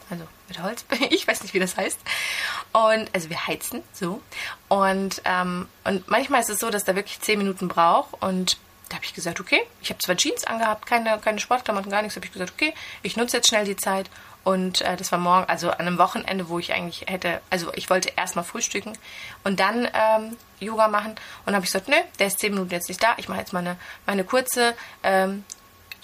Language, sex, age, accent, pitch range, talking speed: German, female, 20-39, German, 185-220 Hz, 220 wpm